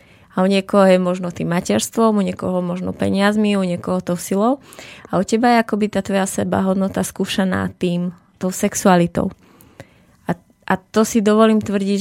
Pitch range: 185-205 Hz